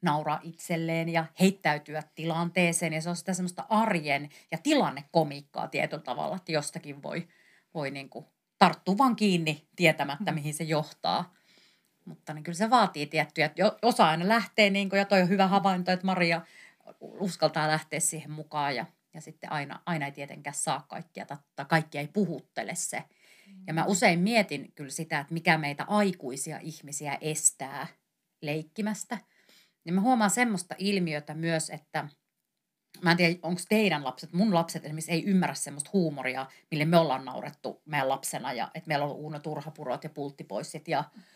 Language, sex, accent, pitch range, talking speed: Finnish, female, native, 155-200 Hz, 160 wpm